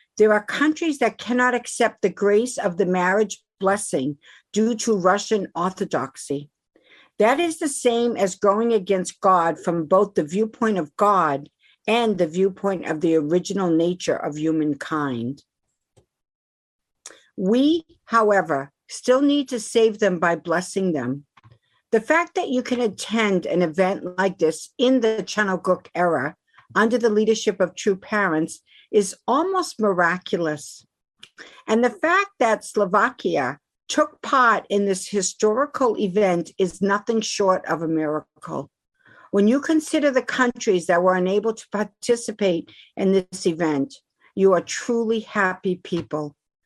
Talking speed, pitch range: 140 wpm, 175-225 Hz